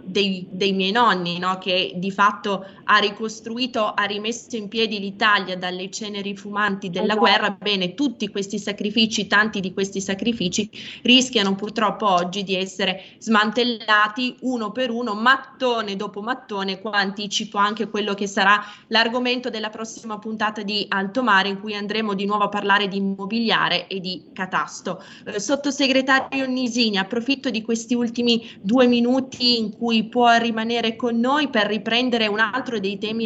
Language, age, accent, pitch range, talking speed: Italian, 20-39, native, 200-235 Hz, 155 wpm